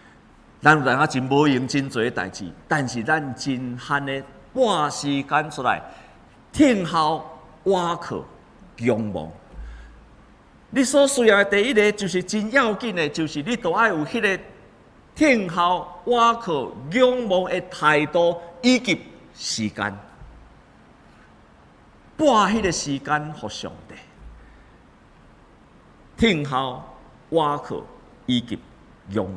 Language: Chinese